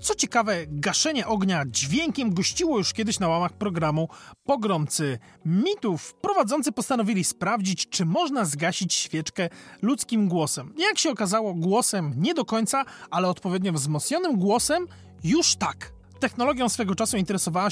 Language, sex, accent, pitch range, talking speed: Polish, male, native, 170-220 Hz, 130 wpm